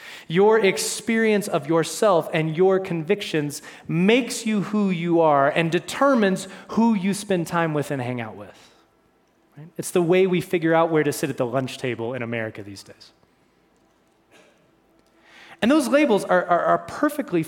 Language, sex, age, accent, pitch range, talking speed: English, male, 30-49, American, 145-210 Hz, 160 wpm